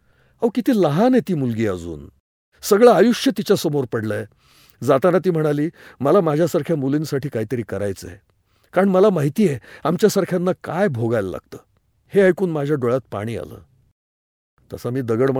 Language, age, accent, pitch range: Hindi, 50-69, native, 100-155 Hz